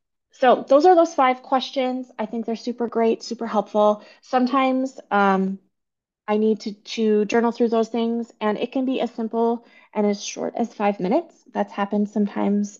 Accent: American